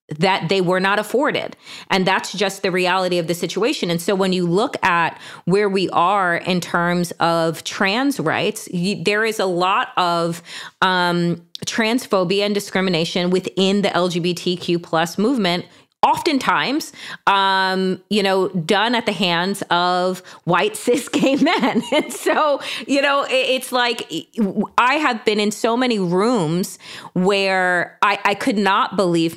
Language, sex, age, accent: English, female, 30-49, American